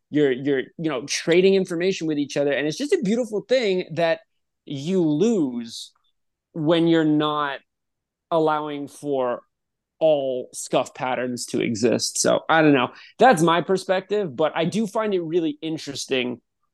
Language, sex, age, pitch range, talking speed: English, male, 20-39, 135-175 Hz, 150 wpm